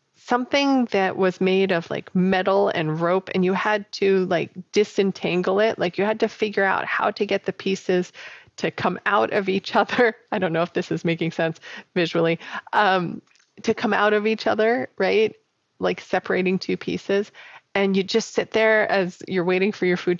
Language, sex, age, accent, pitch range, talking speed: English, female, 30-49, American, 175-210 Hz, 195 wpm